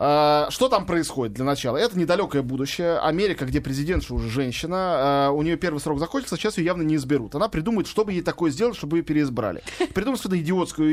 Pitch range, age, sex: 145-185 Hz, 20-39, male